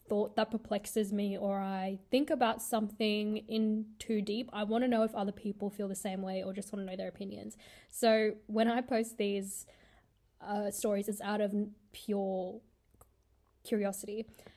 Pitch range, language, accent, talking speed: 205-235 Hz, English, Australian, 175 wpm